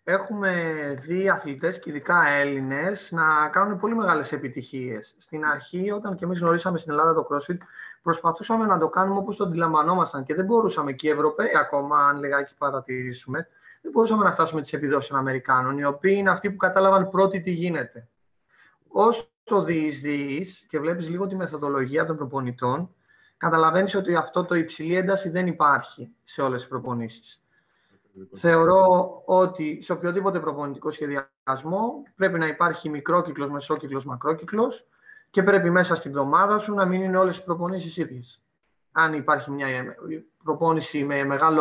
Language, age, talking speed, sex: Greek, 20-39, 160 wpm, male